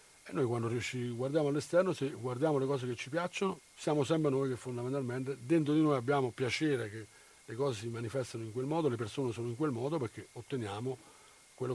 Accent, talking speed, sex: native, 205 wpm, male